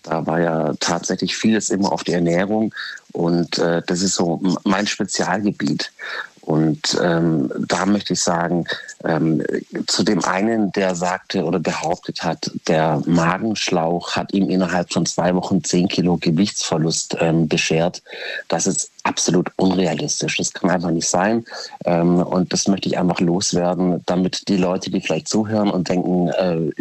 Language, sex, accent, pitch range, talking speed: German, male, German, 85-95 Hz, 155 wpm